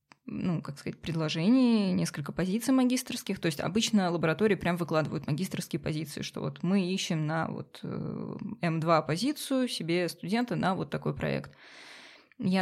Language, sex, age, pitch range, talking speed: Russian, female, 20-39, 160-190 Hz, 145 wpm